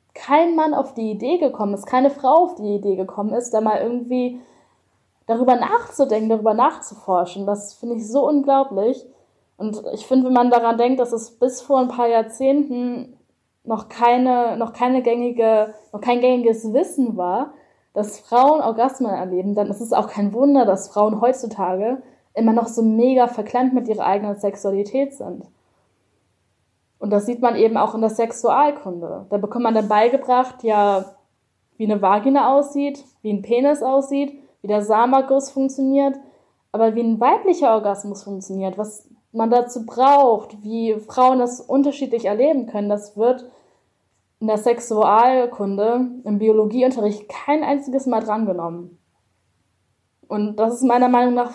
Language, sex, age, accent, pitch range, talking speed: German, female, 10-29, German, 210-255 Hz, 155 wpm